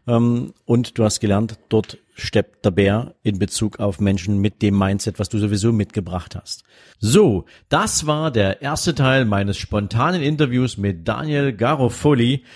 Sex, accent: male, German